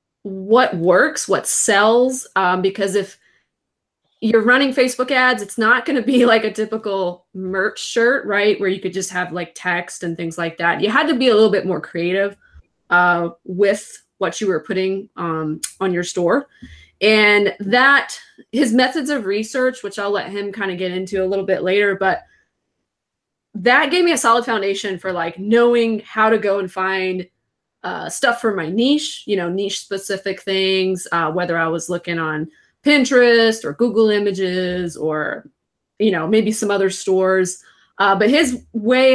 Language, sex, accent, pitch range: English, female, American, 185-225 Hz